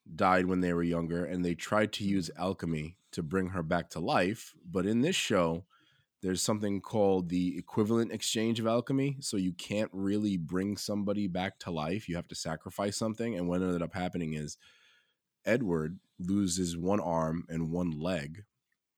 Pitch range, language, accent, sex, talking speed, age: 85-100 Hz, English, American, male, 175 wpm, 20-39